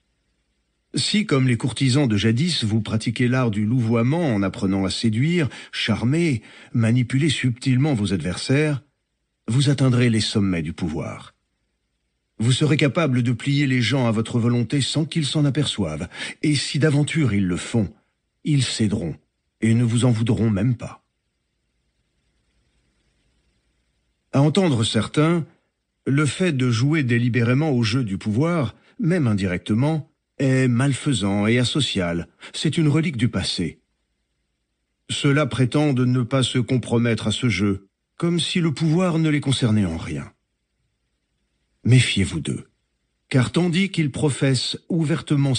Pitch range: 100-145 Hz